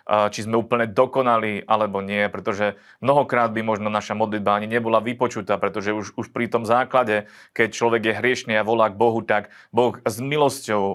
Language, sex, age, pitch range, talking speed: Slovak, male, 30-49, 105-120 Hz, 180 wpm